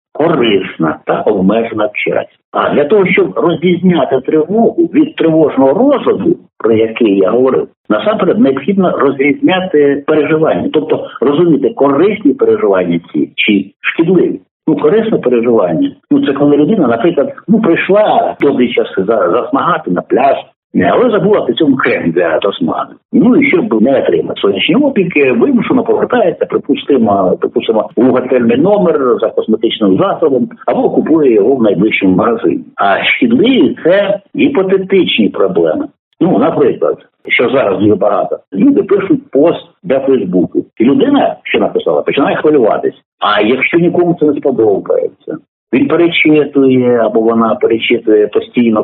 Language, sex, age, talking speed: Ukrainian, male, 60-79, 135 wpm